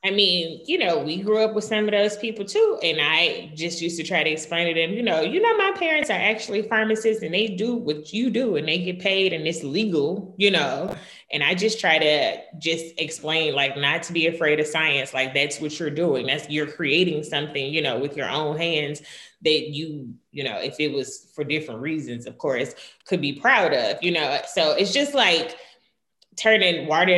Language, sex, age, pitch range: English, female, 20-39, 150-190 Hz